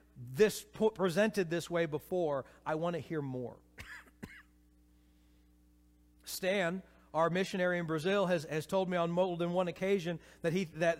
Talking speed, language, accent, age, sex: 145 wpm, English, American, 40-59, male